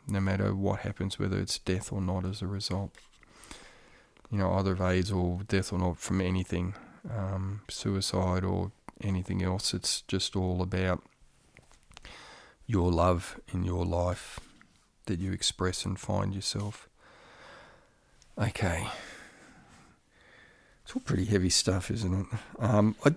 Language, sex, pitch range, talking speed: English, male, 90-110 Hz, 130 wpm